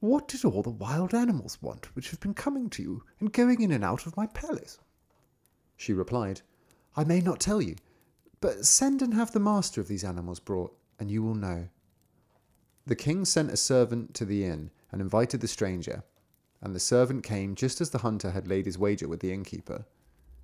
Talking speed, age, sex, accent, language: 205 wpm, 30-49, male, British, English